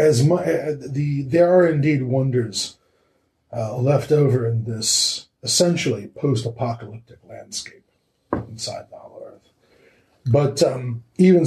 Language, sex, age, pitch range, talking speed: English, male, 40-59, 115-140 Hz, 120 wpm